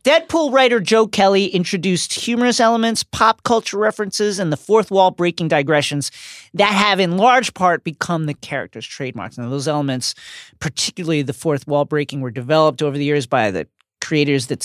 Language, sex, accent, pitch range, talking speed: English, male, American, 140-190 Hz, 165 wpm